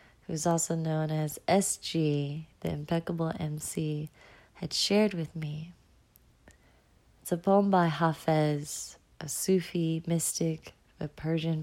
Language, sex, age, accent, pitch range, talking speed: English, female, 30-49, American, 150-175 Hz, 115 wpm